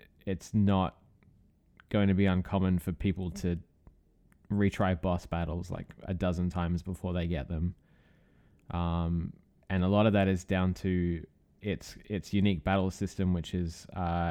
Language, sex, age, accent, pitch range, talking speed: English, male, 20-39, Australian, 85-95 Hz, 150 wpm